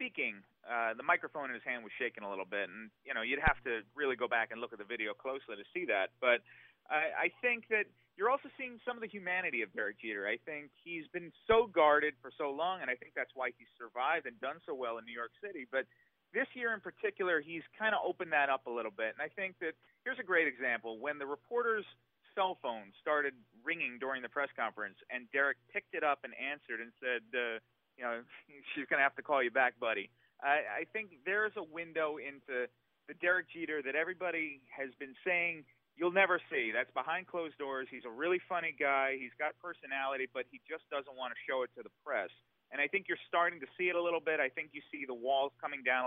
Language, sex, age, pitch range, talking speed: English, male, 30-49, 130-175 Hz, 240 wpm